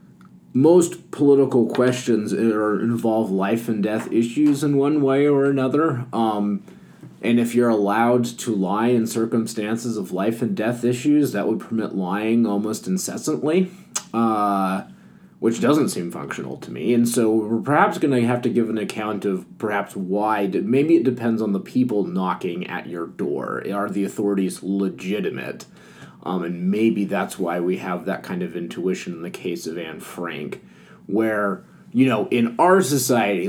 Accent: American